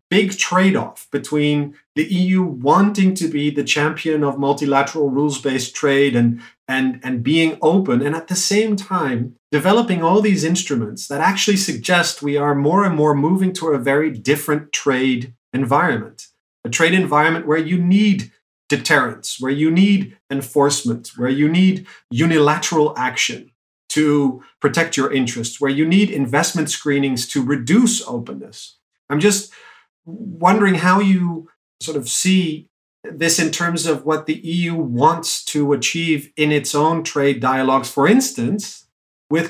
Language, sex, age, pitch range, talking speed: English, male, 40-59, 125-165 Hz, 145 wpm